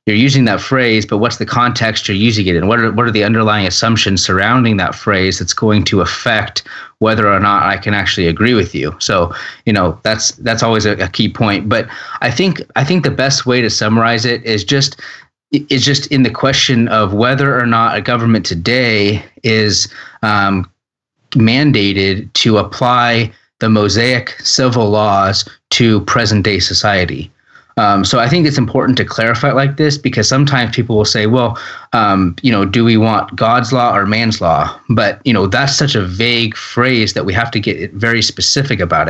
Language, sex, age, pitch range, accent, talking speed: English, male, 30-49, 105-130 Hz, American, 195 wpm